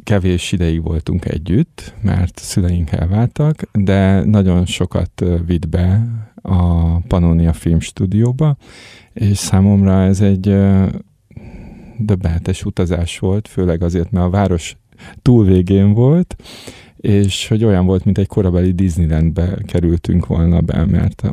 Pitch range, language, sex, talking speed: 90-105 Hz, Hungarian, male, 115 wpm